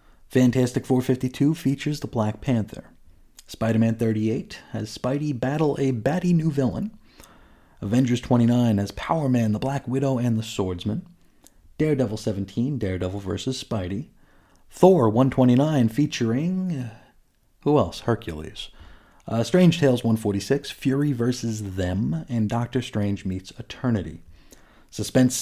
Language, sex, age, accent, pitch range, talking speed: English, male, 30-49, American, 105-135 Hz, 120 wpm